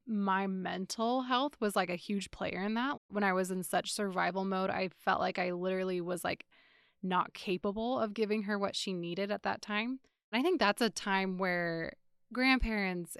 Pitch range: 180-205 Hz